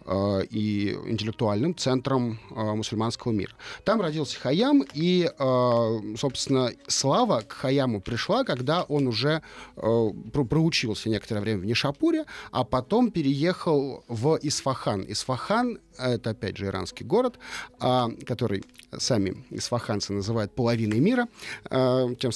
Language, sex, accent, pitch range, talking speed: Russian, male, native, 110-150 Hz, 105 wpm